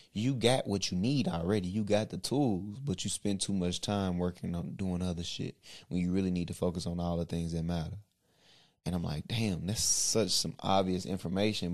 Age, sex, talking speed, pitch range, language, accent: 20-39, male, 215 wpm, 85-105 Hz, English, American